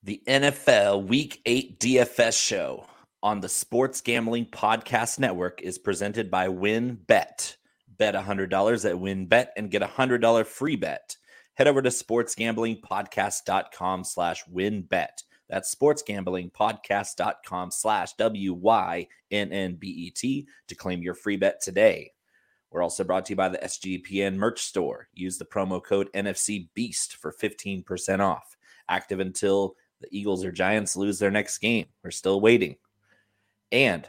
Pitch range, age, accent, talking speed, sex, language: 95-115 Hz, 30-49, American, 145 wpm, male, English